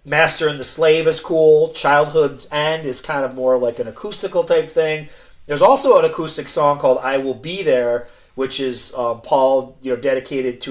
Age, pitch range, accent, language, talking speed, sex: 40-59, 135-180 Hz, American, English, 200 wpm, male